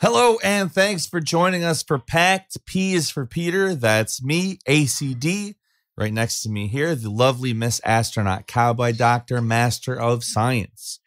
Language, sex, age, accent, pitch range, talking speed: English, male, 30-49, American, 105-140 Hz, 155 wpm